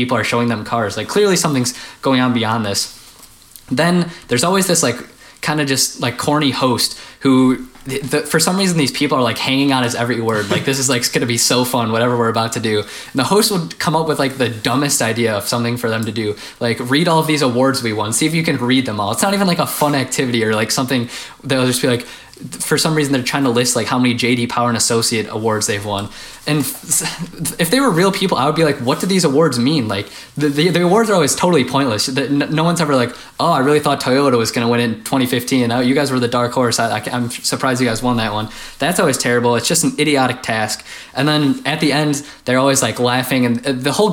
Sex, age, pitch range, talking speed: male, 20-39, 120-145 Hz, 260 wpm